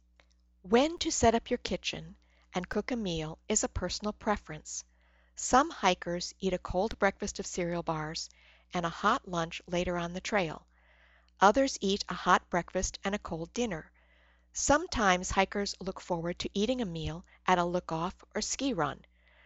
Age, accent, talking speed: 50-69, American, 165 wpm